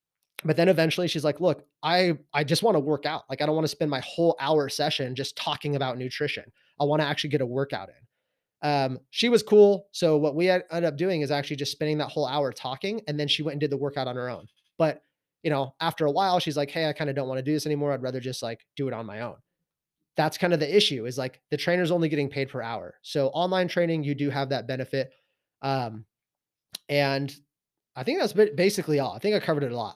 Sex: male